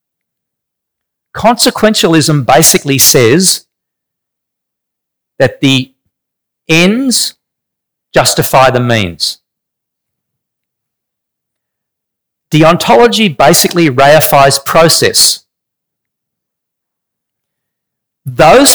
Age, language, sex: 50-69, English, male